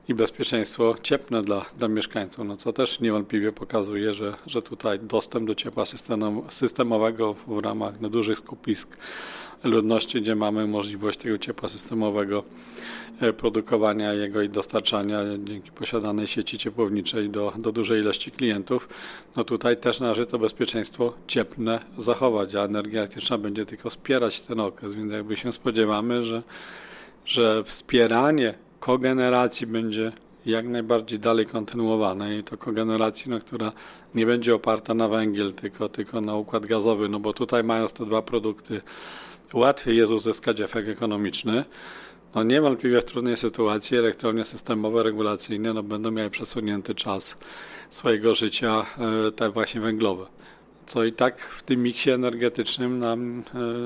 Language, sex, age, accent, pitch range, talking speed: Polish, male, 40-59, native, 105-120 Hz, 145 wpm